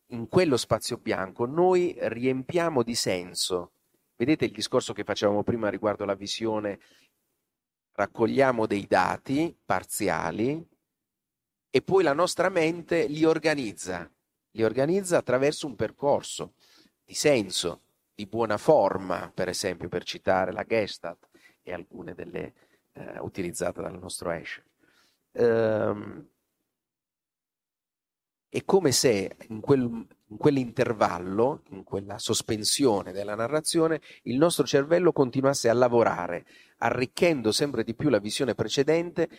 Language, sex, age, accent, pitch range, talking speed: Italian, male, 40-59, native, 100-140 Hz, 115 wpm